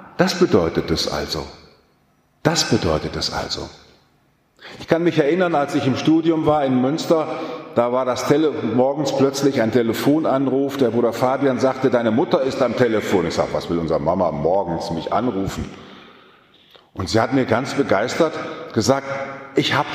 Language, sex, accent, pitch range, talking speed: German, male, German, 110-145 Hz, 160 wpm